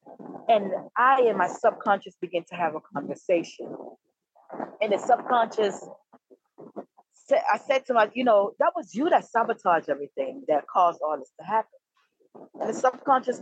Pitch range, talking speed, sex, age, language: 215-280 Hz, 155 wpm, female, 30-49, English